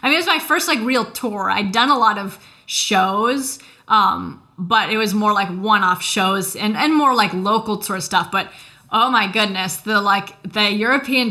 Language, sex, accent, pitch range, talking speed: English, female, American, 190-215 Hz, 200 wpm